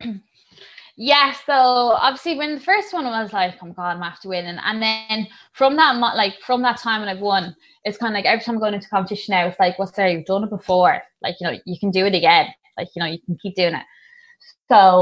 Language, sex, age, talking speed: English, female, 20-39, 260 wpm